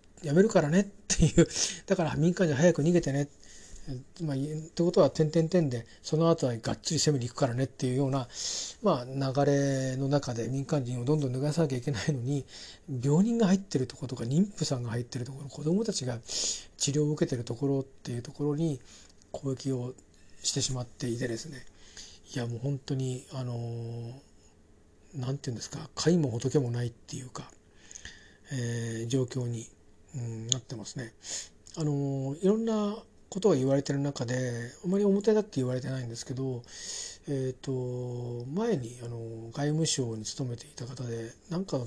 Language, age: Japanese, 40-59